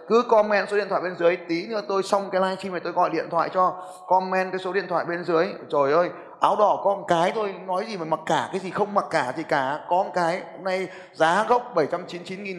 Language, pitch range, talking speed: Vietnamese, 165-205 Hz, 255 wpm